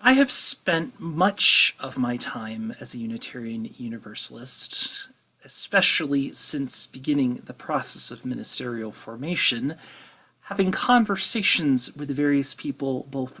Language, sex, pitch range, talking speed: English, male, 135-200 Hz, 110 wpm